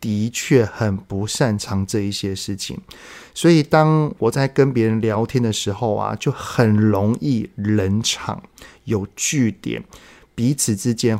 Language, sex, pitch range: Chinese, male, 105-135 Hz